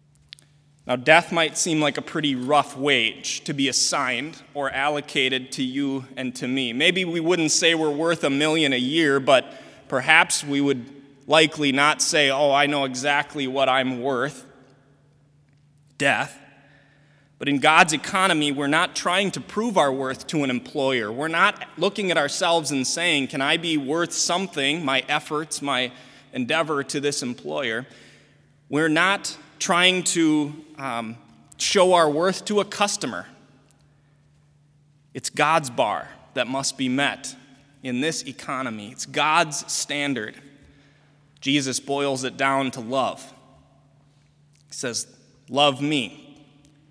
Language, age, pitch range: English, 20-39, 135-155 Hz